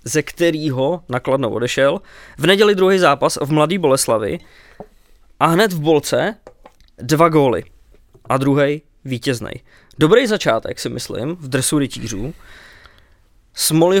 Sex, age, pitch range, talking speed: male, 20-39, 130-160 Hz, 120 wpm